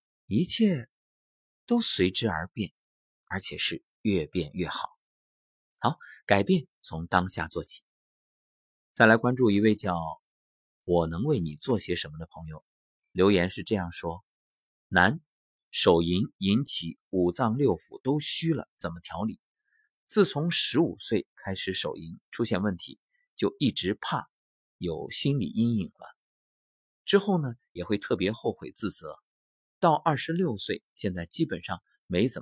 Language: Chinese